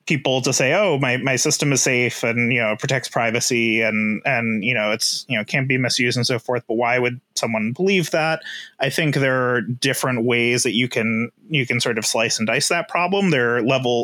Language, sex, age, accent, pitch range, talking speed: English, male, 30-49, American, 115-135 Hz, 230 wpm